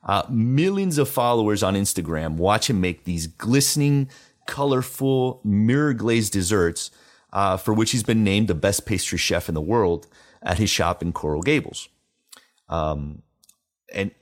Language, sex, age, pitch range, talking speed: English, male, 30-49, 90-130 Hz, 150 wpm